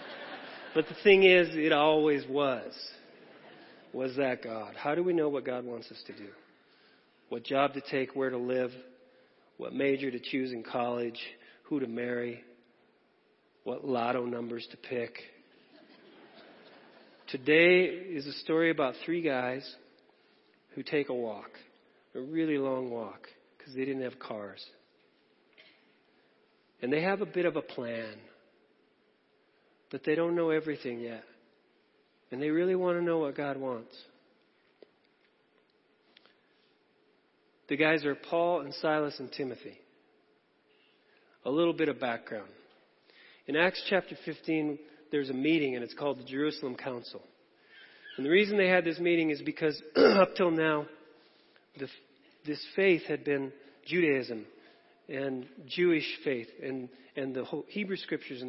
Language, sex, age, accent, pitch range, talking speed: English, male, 40-59, American, 125-155 Hz, 140 wpm